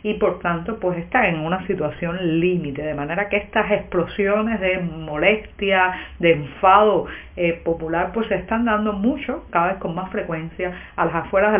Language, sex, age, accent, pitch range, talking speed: Spanish, female, 50-69, American, 175-215 Hz, 175 wpm